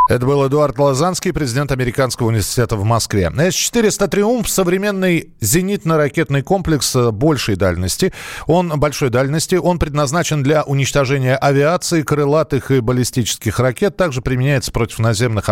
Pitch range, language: 125-175 Hz, Russian